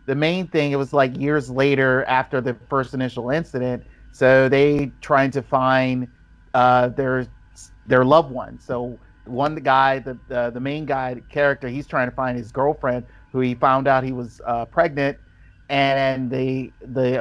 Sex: male